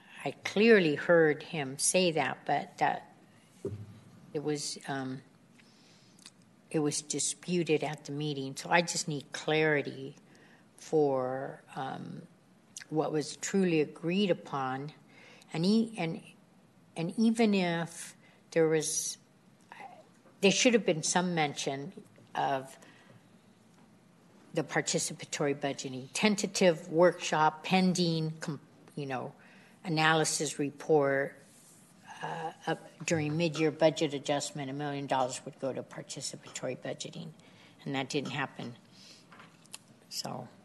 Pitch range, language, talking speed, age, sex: 140-175 Hz, English, 110 wpm, 60-79, female